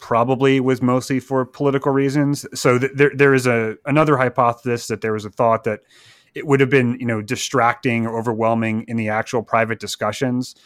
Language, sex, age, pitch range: English, male, 30-49, 110-130 Hz